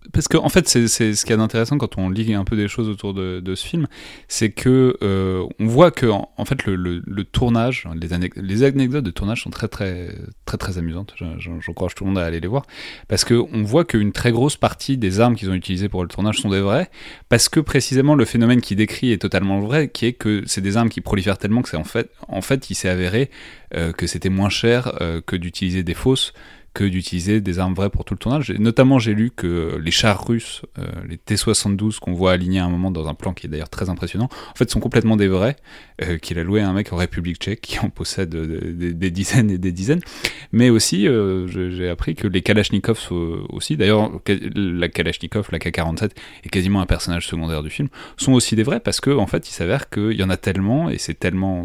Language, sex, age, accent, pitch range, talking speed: French, male, 30-49, French, 90-115 Hz, 245 wpm